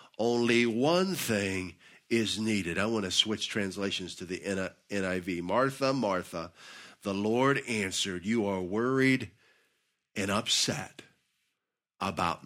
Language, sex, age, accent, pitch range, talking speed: English, male, 50-69, American, 100-130 Hz, 115 wpm